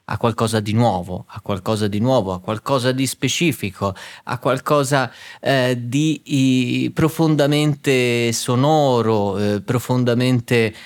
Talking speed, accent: 115 wpm, native